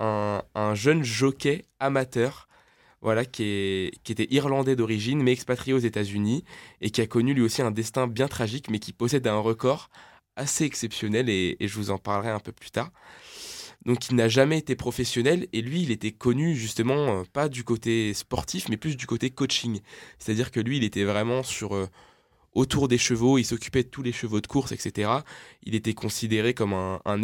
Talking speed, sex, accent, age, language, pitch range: 200 wpm, male, French, 20-39, French, 105-130 Hz